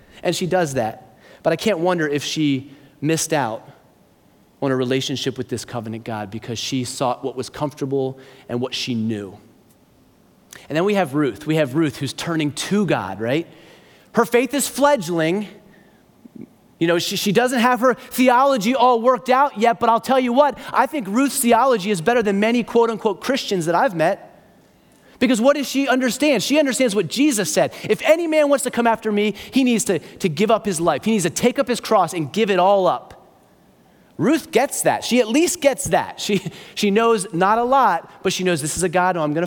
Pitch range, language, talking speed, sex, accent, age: 145-235 Hz, English, 210 wpm, male, American, 30-49